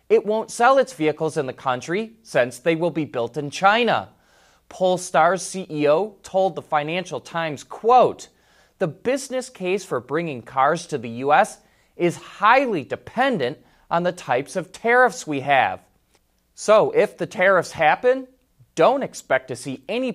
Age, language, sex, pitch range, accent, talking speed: 30-49, English, male, 130-200 Hz, American, 150 wpm